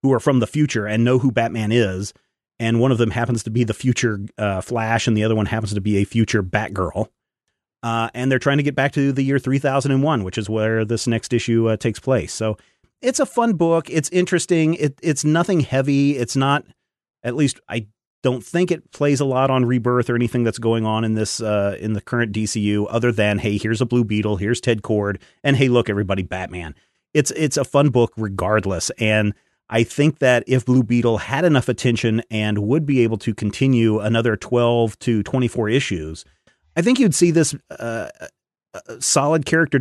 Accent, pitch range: American, 110-135 Hz